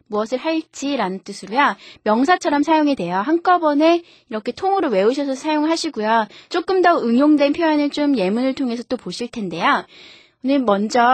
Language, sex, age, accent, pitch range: Korean, female, 20-39, native, 200-290 Hz